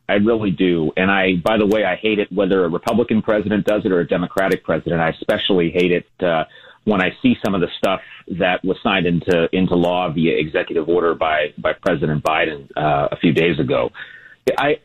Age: 40-59